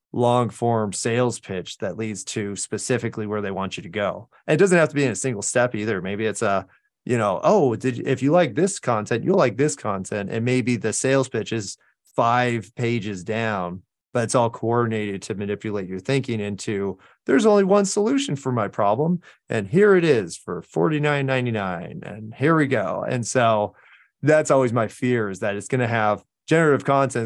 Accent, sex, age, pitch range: American, male, 30-49, 105-135 Hz